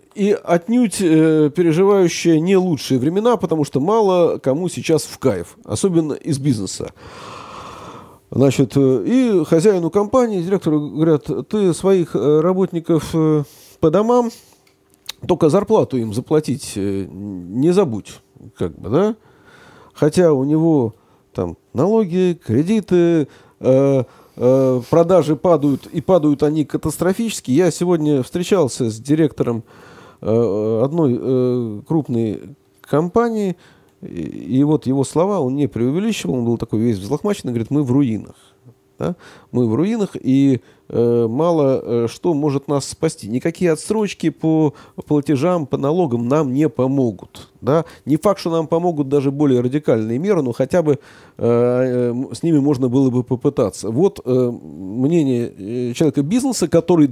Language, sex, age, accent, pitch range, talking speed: Russian, male, 40-59, native, 125-175 Hz, 120 wpm